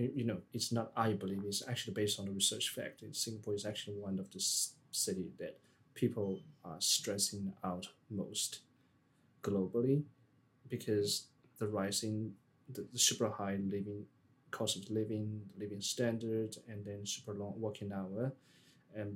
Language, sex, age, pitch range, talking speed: English, male, 20-39, 100-125 Hz, 155 wpm